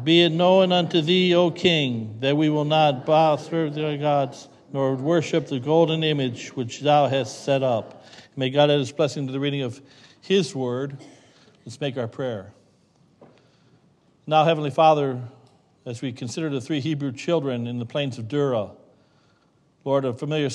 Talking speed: 170 wpm